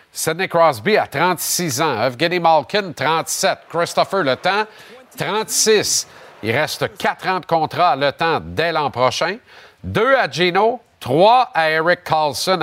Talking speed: 145 wpm